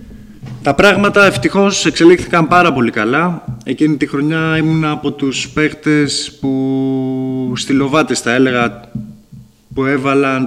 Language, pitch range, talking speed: Greek, 120-150 Hz, 115 wpm